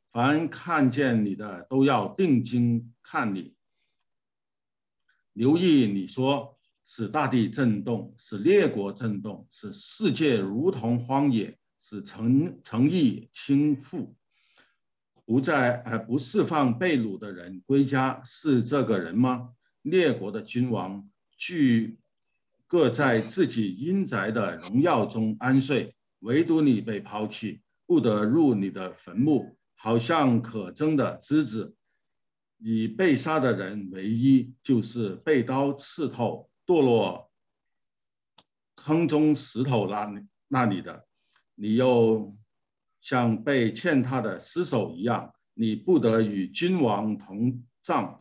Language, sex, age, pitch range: Chinese, male, 50-69, 105-135 Hz